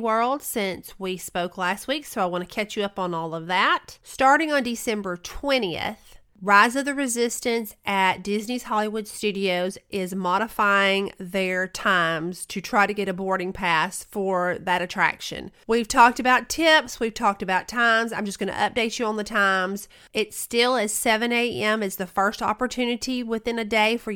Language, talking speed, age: English, 180 wpm, 40-59